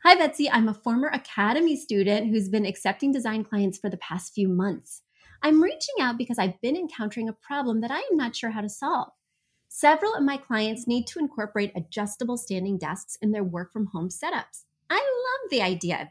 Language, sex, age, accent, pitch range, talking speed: English, female, 30-49, American, 185-260 Hz, 200 wpm